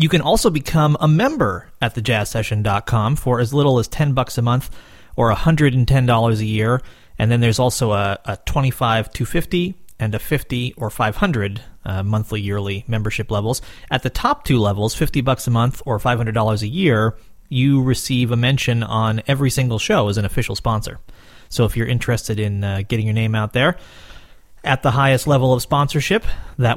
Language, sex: English, male